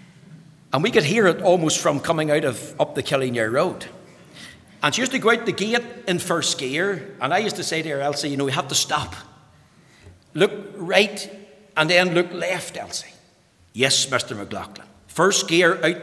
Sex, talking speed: male, 195 wpm